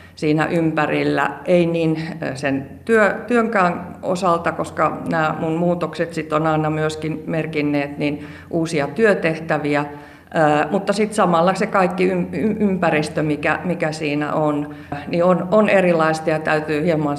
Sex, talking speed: female, 120 wpm